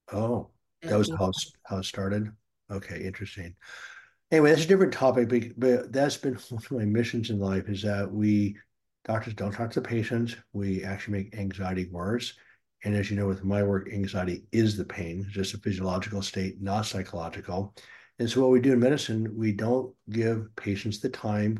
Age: 60-79